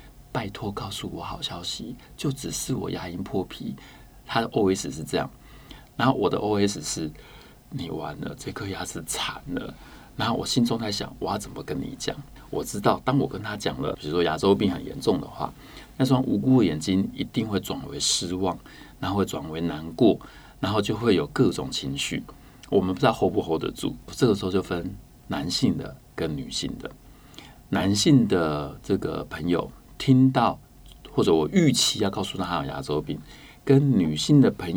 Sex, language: male, Chinese